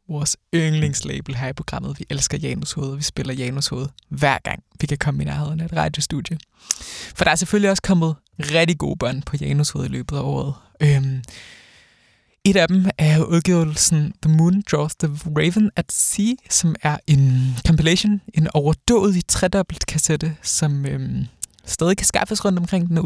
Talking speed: 180 wpm